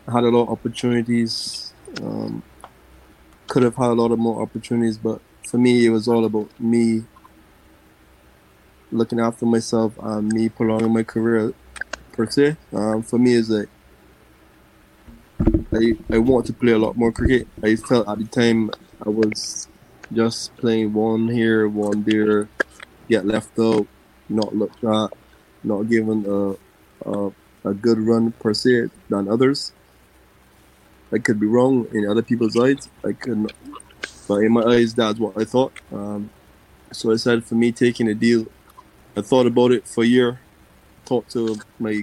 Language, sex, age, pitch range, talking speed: English, male, 20-39, 105-115 Hz, 160 wpm